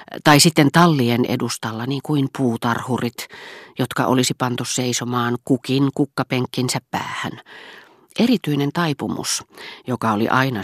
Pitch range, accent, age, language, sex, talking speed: 120-160 Hz, native, 40-59, Finnish, female, 105 wpm